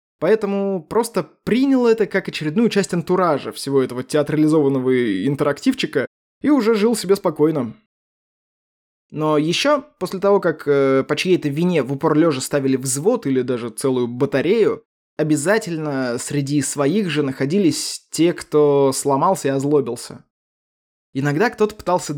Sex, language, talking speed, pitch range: male, Russian, 125 wpm, 140-185 Hz